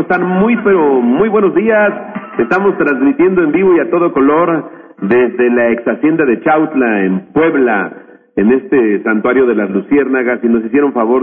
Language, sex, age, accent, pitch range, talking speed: Spanish, male, 50-69, Mexican, 115-135 Hz, 170 wpm